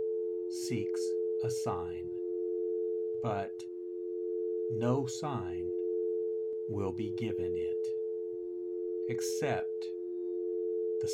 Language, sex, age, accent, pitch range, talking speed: English, male, 50-69, American, 90-110 Hz, 65 wpm